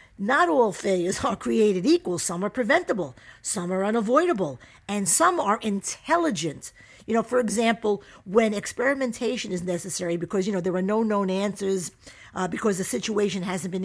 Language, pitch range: English, 190-250 Hz